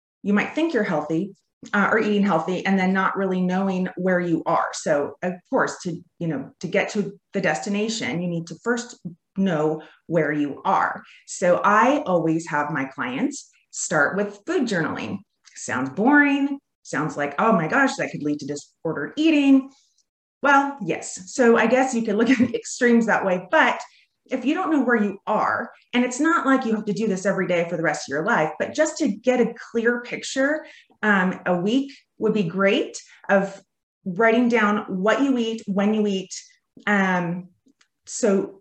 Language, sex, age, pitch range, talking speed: English, female, 30-49, 180-245 Hz, 190 wpm